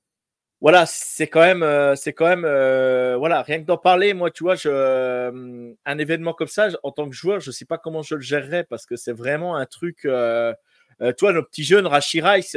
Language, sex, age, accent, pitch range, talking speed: French, male, 30-49, French, 145-185 Hz, 220 wpm